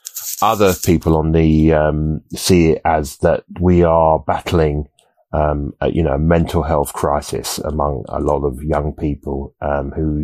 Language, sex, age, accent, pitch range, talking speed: English, male, 30-49, British, 75-85 Hz, 165 wpm